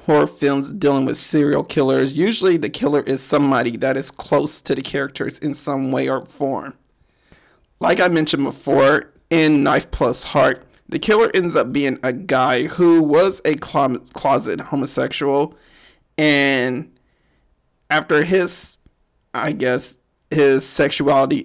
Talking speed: 135 wpm